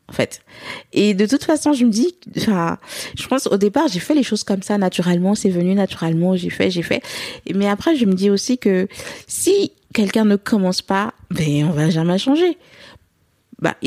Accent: French